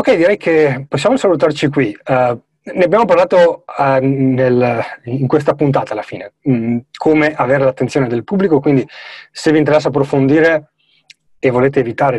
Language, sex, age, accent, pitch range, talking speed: Italian, male, 30-49, native, 125-150 Hz, 155 wpm